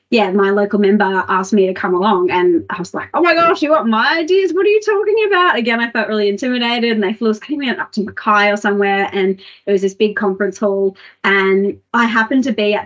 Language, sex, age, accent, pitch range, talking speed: English, female, 30-49, Australian, 195-250 Hz, 240 wpm